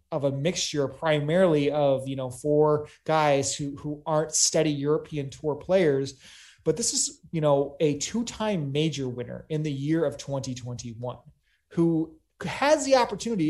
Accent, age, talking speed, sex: American, 30-49, 150 wpm, male